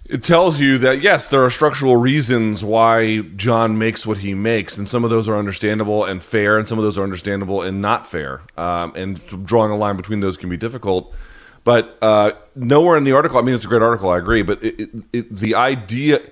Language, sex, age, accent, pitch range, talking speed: English, male, 30-49, American, 100-125 Hz, 230 wpm